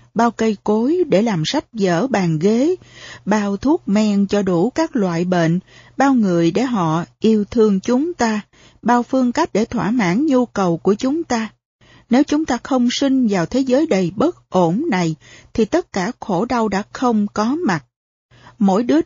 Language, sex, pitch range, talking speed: Vietnamese, female, 180-255 Hz, 185 wpm